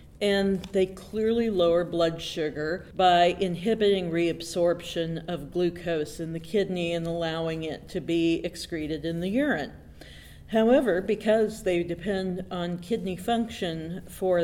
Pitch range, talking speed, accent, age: 170-195 Hz, 130 wpm, American, 50-69